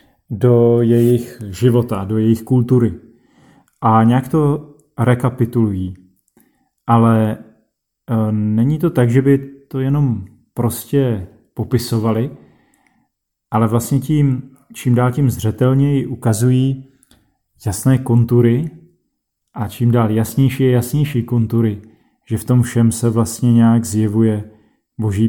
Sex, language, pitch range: male, Czech, 110-125 Hz